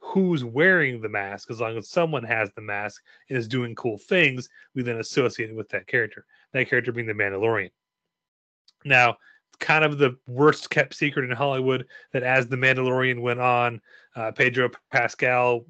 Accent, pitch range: American, 115-145 Hz